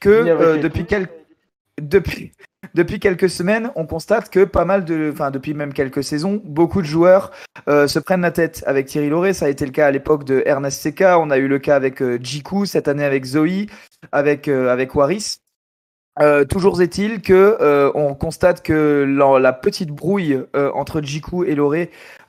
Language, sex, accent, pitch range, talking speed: French, male, French, 135-165 Hz, 185 wpm